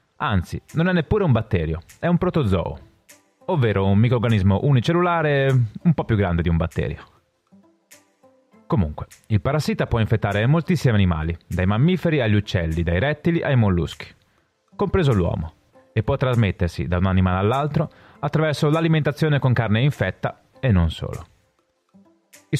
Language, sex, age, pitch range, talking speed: Italian, male, 30-49, 100-160 Hz, 140 wpm